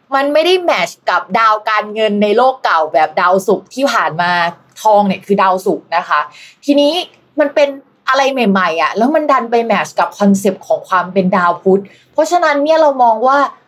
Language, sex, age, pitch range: Thai, female, 20-39, 195-270 Hz